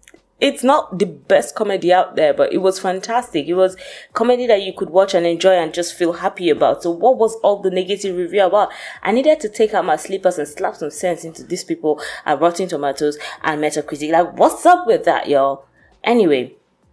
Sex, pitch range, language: female, 150-205 Hz, English